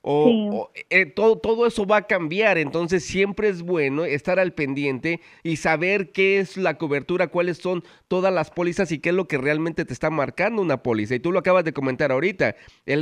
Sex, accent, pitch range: male, Mexican, 140-180 Hz